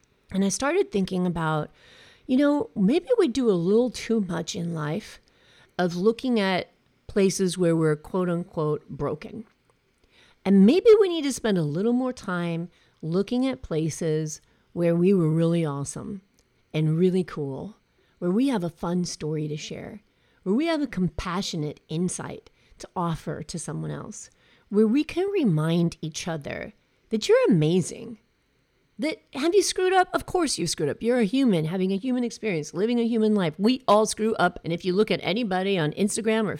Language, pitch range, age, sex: English, 165-225 Hz, 40-59, female